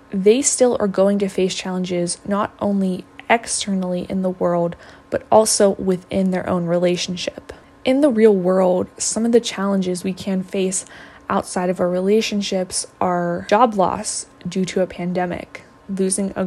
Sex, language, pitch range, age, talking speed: female, English, 180-210 Hz, 20-39, 155 wpm